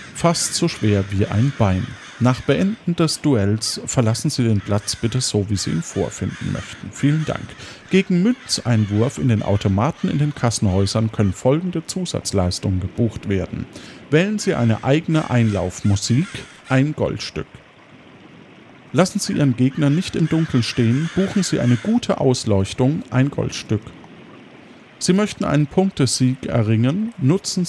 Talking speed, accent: 140 wpm, German